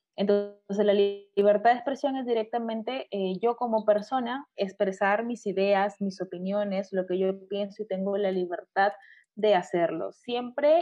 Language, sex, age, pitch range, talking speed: Spanish, female, 20-39, 185-220 Hz, 150 wpm